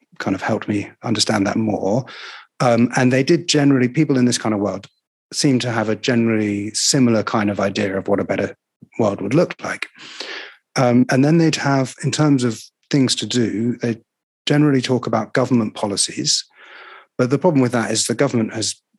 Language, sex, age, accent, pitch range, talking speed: English, male, 30-49, British, 110-135 Hz, 195 wpm